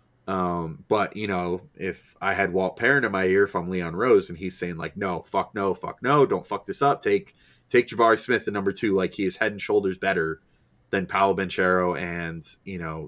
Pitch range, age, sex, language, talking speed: 90-115 Hz, 20-39, male, English, 220 wpm